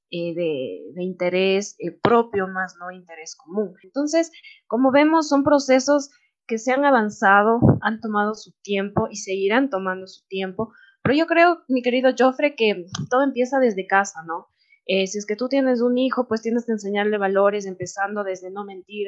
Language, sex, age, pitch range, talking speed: Spanish, female, 20-39, 190-255 Hz, 180 wpm